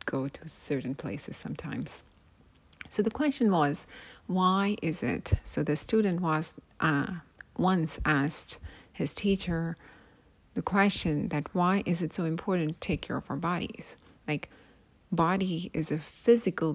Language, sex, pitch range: English, female, 150-200 Hz